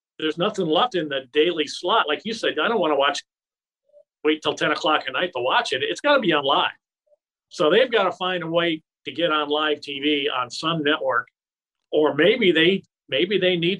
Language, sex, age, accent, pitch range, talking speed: English, male, 50-69, American, 150-180 Hz, 220 wpm